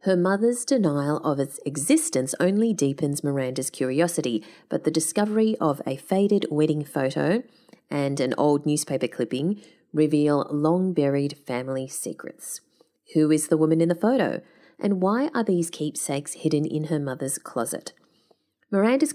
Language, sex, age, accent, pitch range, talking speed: English, female, 30-49, Australian, 140-200 Hz, 145 wpm